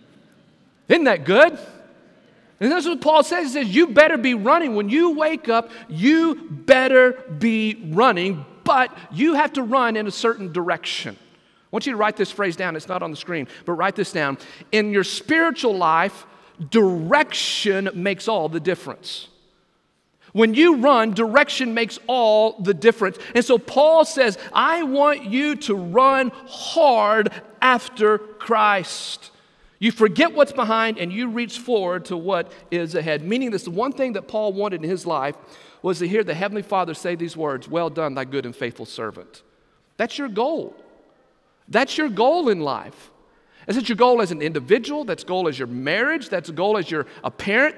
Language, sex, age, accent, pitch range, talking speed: English, male, 50-69, American, 180-260 Hz, 175 wpm